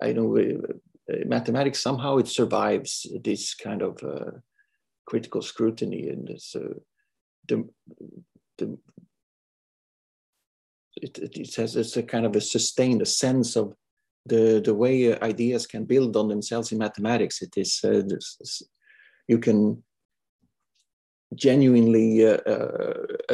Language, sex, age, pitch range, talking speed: English, male, 50-69, 110-135 Hz, 125 wpm